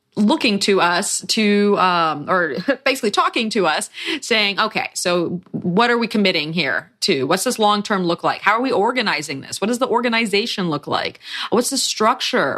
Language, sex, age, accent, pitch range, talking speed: English, female, 30-49, American, 185-275 Hz, 180 wpm